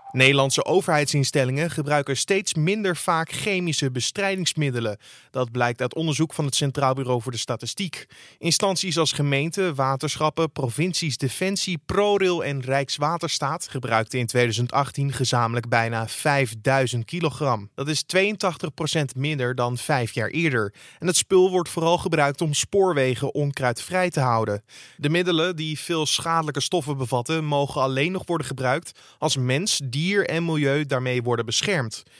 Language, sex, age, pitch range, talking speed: Dutch, male, 20-39, 125-160 Hz, 140 wpm